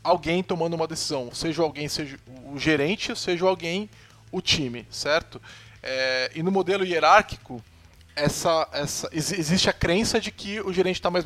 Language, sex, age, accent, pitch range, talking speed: Portuguese, male, 20-39, Brazilian, 140-200 Hz, 160 wpm